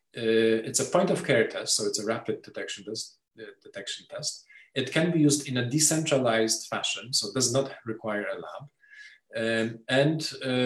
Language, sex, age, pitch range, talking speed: English, male, 40-59, 110-150 Hz, 175 wpm